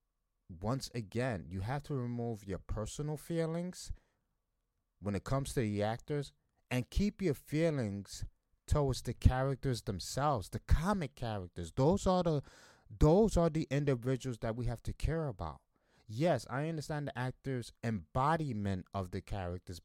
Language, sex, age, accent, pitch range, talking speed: English, male, 30-49, American, 110-160 Hz, 145 wpm